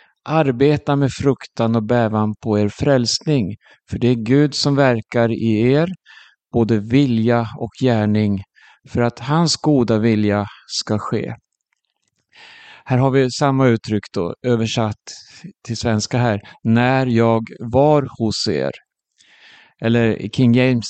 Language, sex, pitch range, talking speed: Swedish, male, 110-140 Hz, 130 wpm